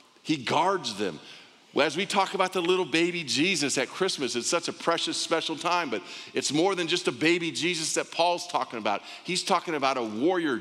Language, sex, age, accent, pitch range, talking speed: English, male, 50-69, American, 100-160 Hz, 205 wpm